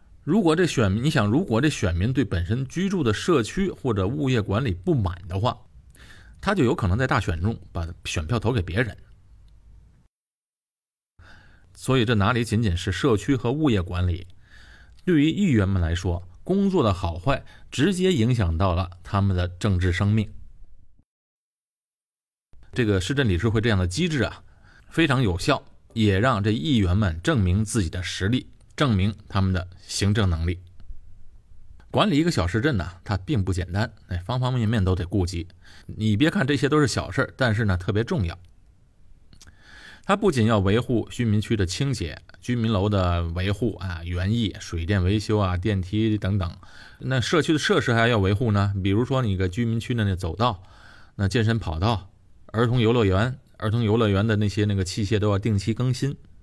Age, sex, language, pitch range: 30-49, male, Chinese, 95-115 Hz